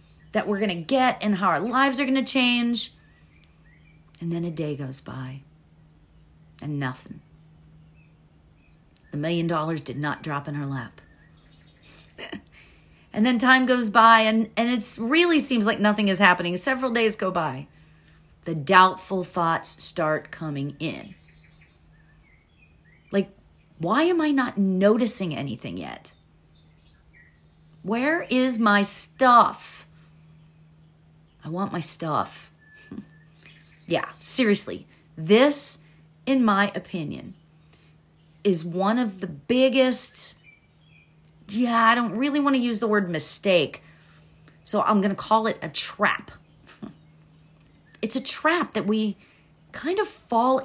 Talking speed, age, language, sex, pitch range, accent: 125 wpm, 40-59, English, female, 155-225 Hz, American